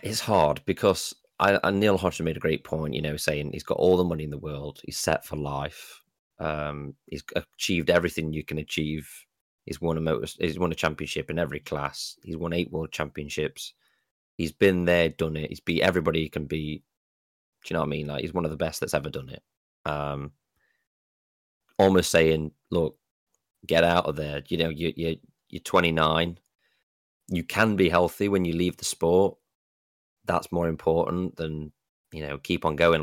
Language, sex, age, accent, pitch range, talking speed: English, male, 20-39, British, 75-95 Hz, 195 wpm